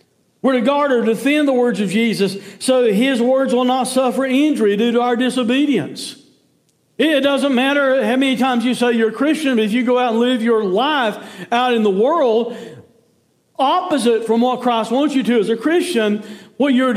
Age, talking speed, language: 60-79, 200 wpm, English